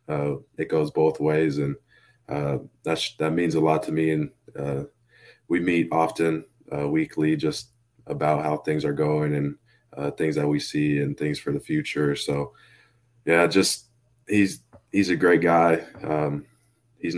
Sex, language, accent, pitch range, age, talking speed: male, English, American, 75-85 Hz, 20-39, 170 wpm